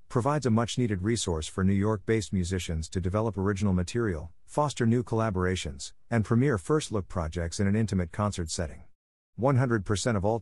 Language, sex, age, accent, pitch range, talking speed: English, male, 50-69, American, 85-115 Hz, 155 wpm